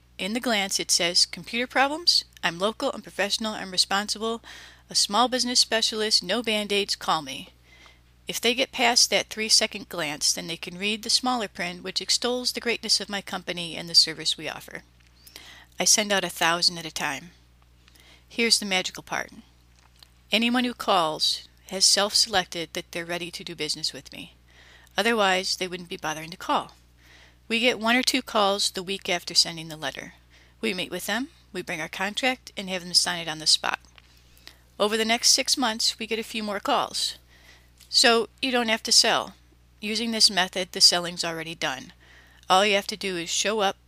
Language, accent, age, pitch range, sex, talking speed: English, American, 30-49, 155-215 Hz, female, 190 wpm